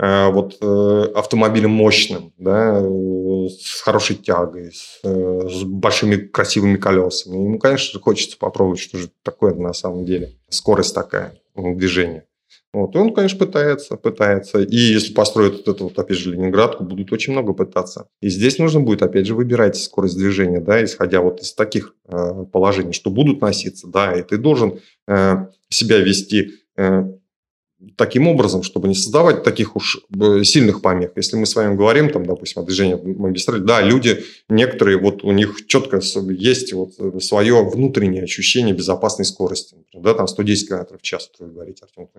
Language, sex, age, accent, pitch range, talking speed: Russian, male, 30-49, native, 95-120 Hz, 155 wpm